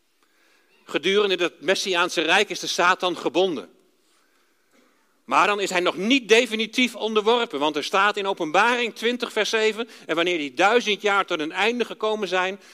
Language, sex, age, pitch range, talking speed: Dutch, male, 50-69, 170-230 Hz, 160 wpm